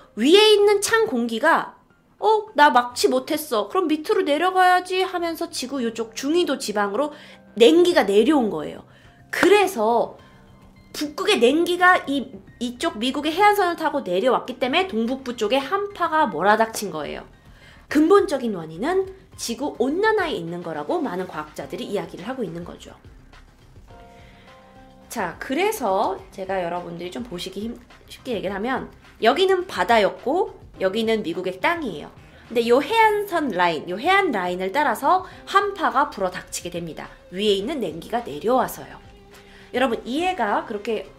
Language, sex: Korean, female